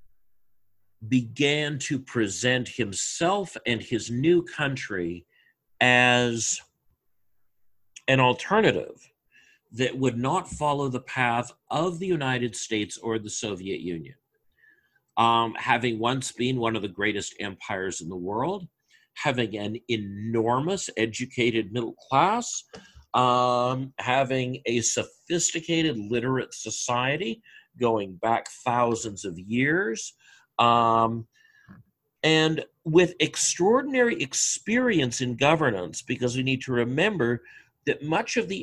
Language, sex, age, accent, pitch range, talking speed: English, male, 50-69, American, 115-150 Hz, 110 wpm